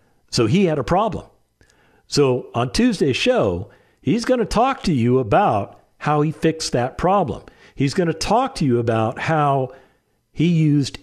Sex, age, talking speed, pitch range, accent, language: male, 50-69, 170 wpm, 105-150 Hz, American, English